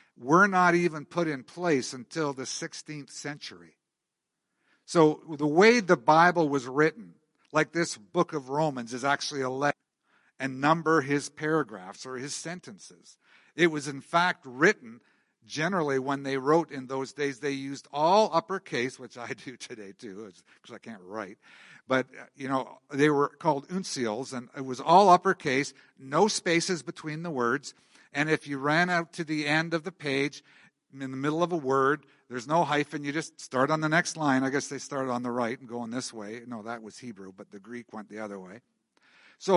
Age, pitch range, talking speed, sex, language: 60-79, 130-165 Hz, 190 wpm, male, English